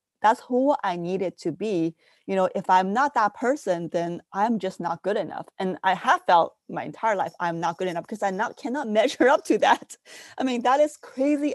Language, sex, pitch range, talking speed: English, female, 180-235 Hz, 220 wpm